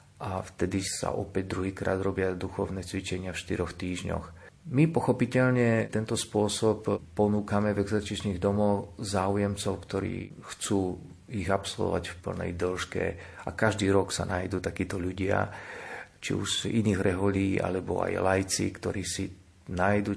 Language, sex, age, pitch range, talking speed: Slovak, male, 40-59, 90-100 Hz, 135 wpm